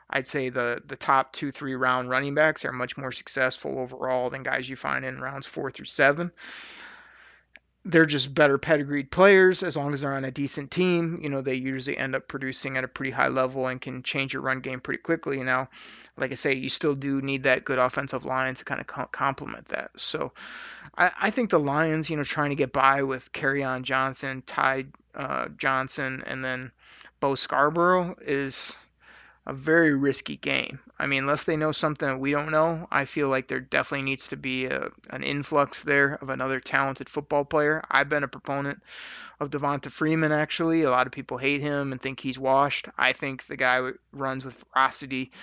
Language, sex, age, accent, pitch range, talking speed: English, male, 30-49, American, 130-145 Hz, 200 wpm